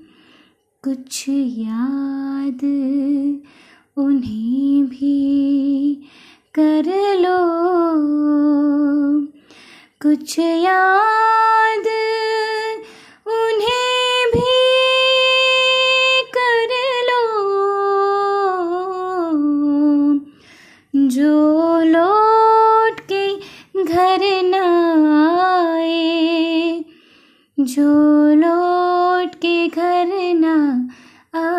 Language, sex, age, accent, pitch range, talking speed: Gujarati, female, 20-39, native, 285-360 Hz, 40 wpm